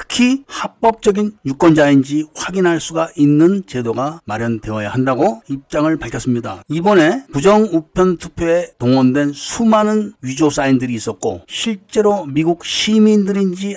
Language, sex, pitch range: Korean, male, 130-180 Hz